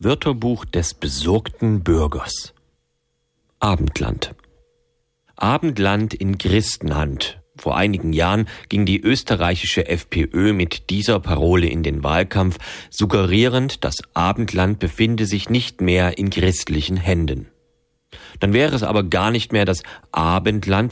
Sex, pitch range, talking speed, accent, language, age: male, 80-110 Hz, 115 wpm, German, German, 40-59